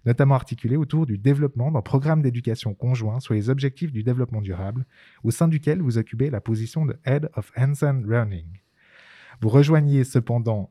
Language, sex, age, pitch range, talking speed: French, male, 20-39, 115-150 Hz, 180 wpm